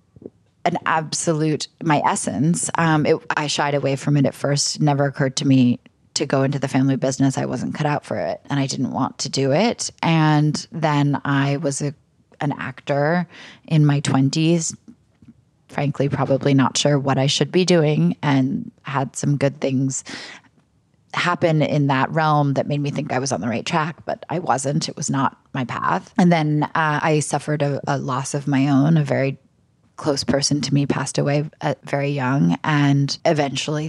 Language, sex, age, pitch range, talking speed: English, female, 20-39, 135-150 Hz, 190 wpm